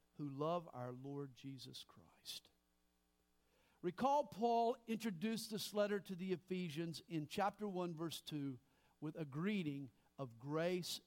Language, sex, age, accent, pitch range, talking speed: English, male, 50-69, American, 155-235 Hz, 130 wpm